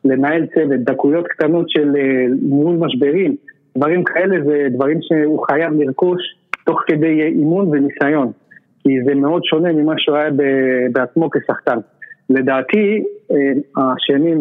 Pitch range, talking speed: 135-165 Hz, 120 wpm